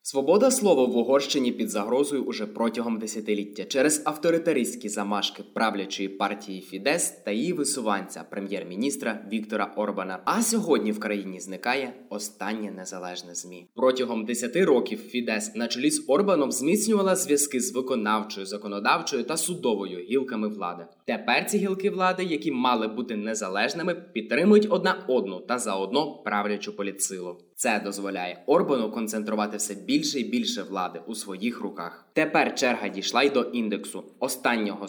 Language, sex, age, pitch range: Ukrainian, male, 20-39, 100-135 Hz